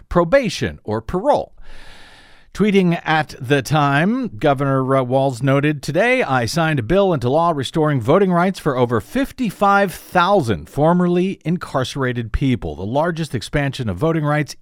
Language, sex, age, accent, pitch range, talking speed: English, male, 50-69, American, 130-180 Hz, 130 wpm